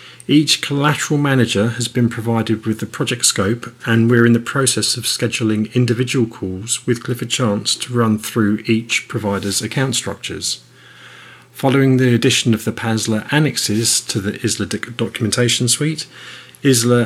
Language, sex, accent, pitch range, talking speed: English, male, British, 110-125 Hz, 150 wpm